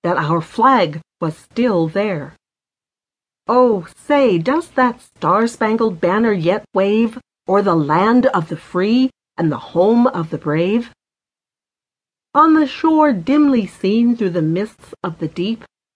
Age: 40-59